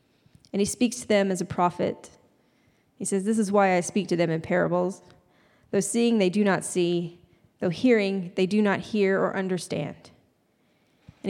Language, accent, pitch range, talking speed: English, American, 190-230 Hz, 180 wpm